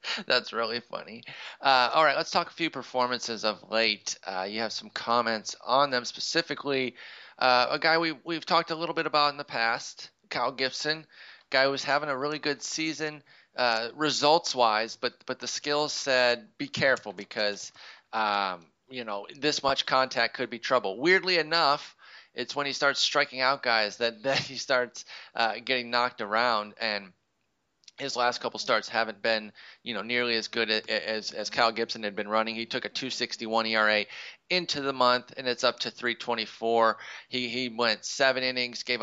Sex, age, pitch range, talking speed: male, 30-49, 115-140 Hz, 185 wpm